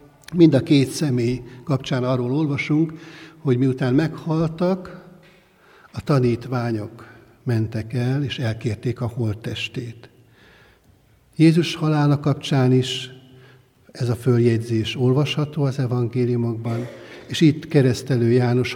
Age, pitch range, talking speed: 60-79, 115-145 Hz, 100 wpm